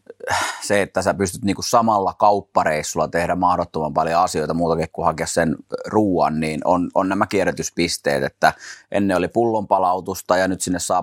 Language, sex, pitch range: Finnish, male, 85-100 Hz